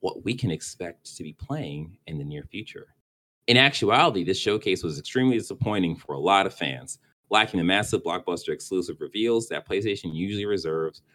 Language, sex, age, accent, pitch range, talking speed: English, male, 30-49, American, 85-135 Hz, 180 wpm